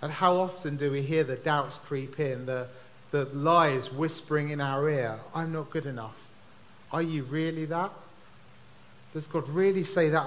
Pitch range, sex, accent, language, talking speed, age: 130-170 Hz, male, British, English, 175 wpm, 40-59